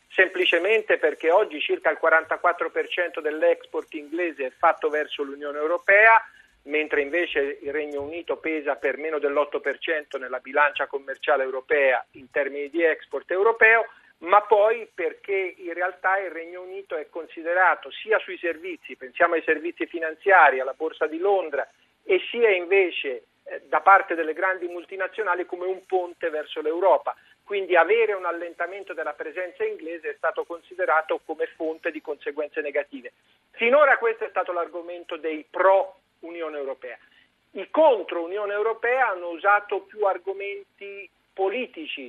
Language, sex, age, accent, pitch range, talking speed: Italian, male, 50-69, native, 160-205 Hz, 135 wpm